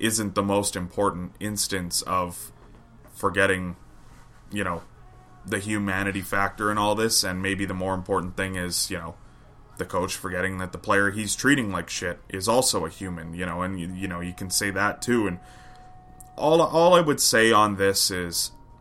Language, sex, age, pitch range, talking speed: English, male, 20-39, 90-110 Hz, 185 wpm